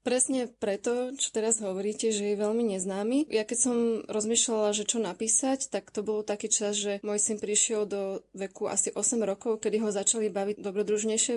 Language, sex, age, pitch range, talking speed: Slovak, female, 20-39, 200-230 Hz, 185 wpm